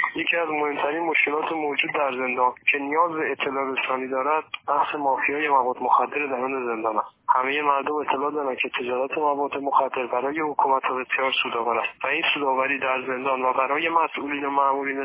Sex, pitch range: male, 130-150 Hz